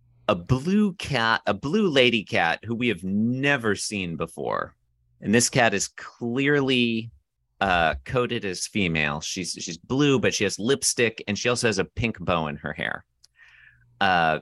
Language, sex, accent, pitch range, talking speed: English, male, American, 90-120 Hz, 165 wpm